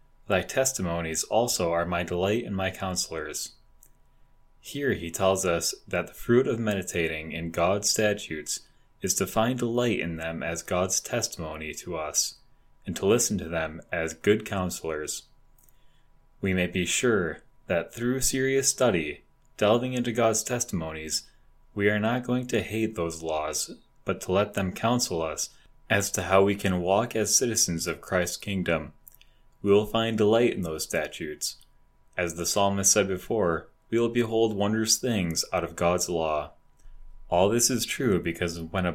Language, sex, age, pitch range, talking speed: English, male, 20-39, 85-110 Hz, 160 wpm